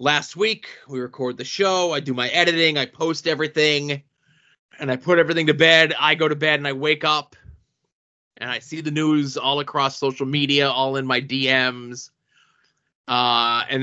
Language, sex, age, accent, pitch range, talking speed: English, male, 20-39, American, 135-160 Hz, 180 wpm